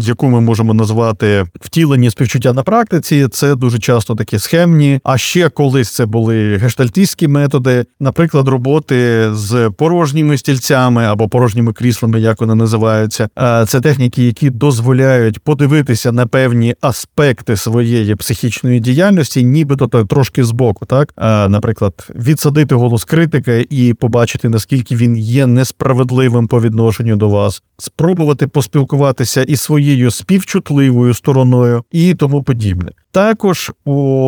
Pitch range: 115-145 Hz